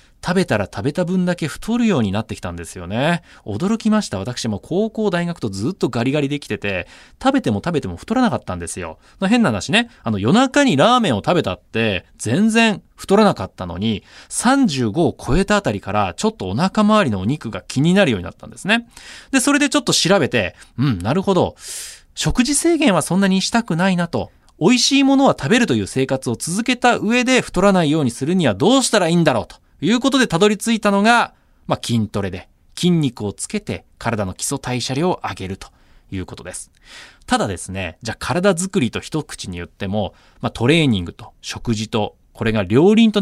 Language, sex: Japanese, male